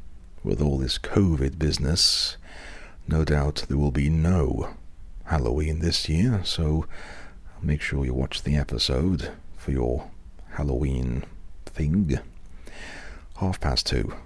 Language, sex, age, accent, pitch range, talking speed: English, male, 40-59, British, 70-85 Hz, 120 wpm